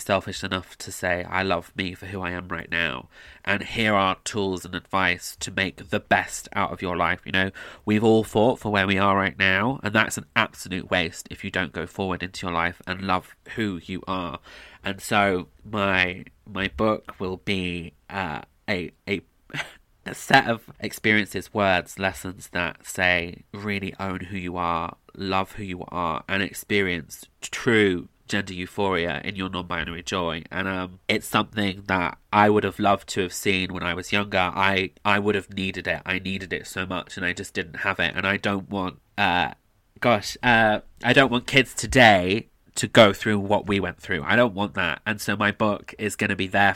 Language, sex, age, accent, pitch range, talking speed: English, male, 20-39, British, 90-105 Hz, 200 wpm